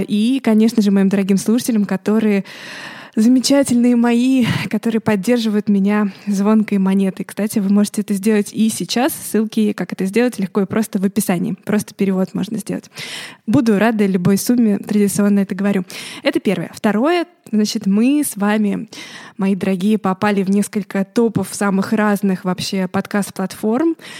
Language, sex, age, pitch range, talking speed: Russian, female, 20-39, 200-235 Hz, 145 wpm